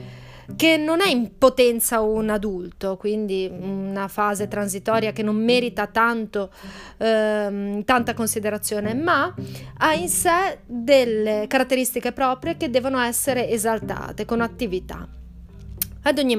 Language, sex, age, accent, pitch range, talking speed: Italian, female, 30-49, native, 200-265 Hz, 120 wpm